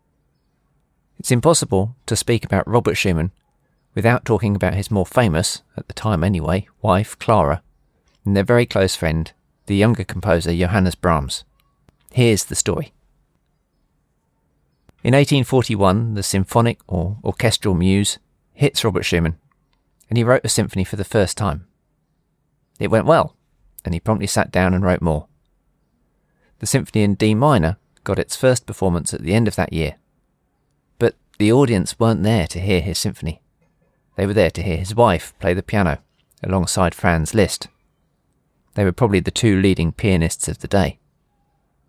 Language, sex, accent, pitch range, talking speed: English, male, British, 90-115 Hz, 155 wpm